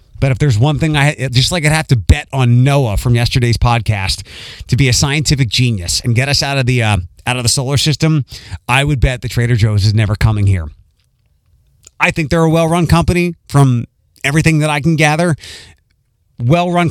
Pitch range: 115-165 Hz